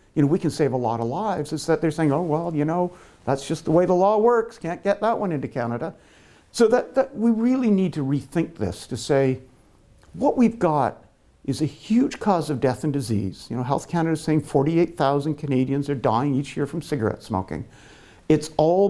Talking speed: 220 wpm